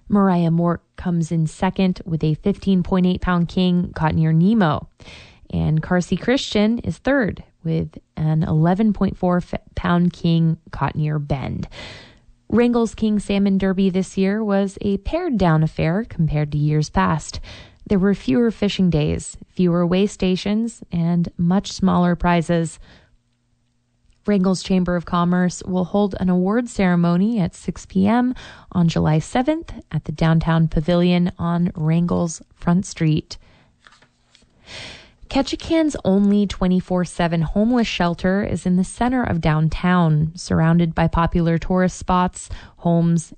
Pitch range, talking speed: 160-195 Hz, 125 wpm